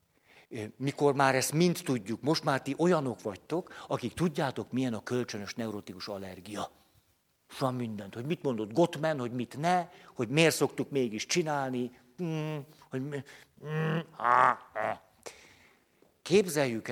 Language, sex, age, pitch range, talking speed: Hungarian, male, 60-79, 110-160 Hz, 115 wpm